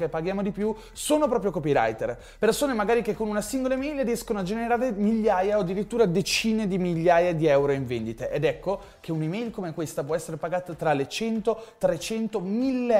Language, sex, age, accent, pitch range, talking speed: Italian, male, 20-39, native, 160-220 Hz, 190 wpm